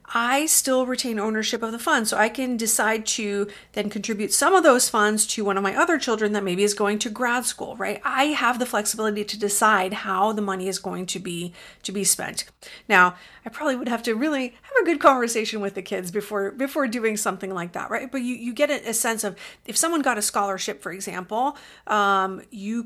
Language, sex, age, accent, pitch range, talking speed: English, female, 40-59, American, 200-250 Hz, 225 wpm